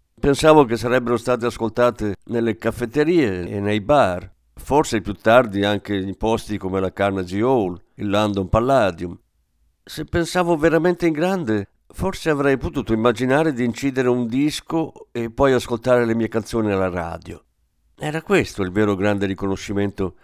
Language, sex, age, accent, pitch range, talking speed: Italian, male, 50-69, native, 90-130 Hz, 150 wpm